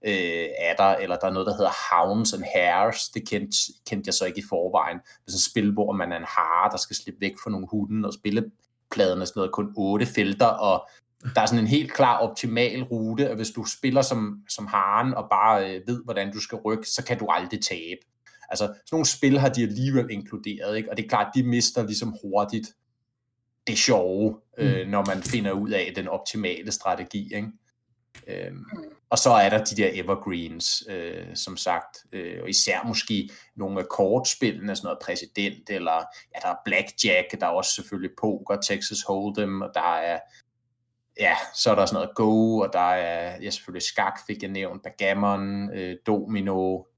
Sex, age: male, 20-39